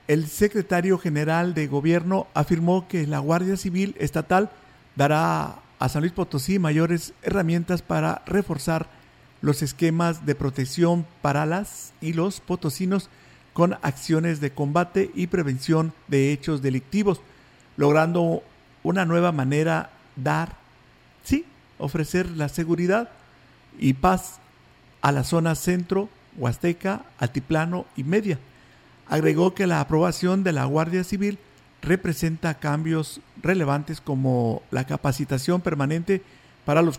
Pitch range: 145-180 Hz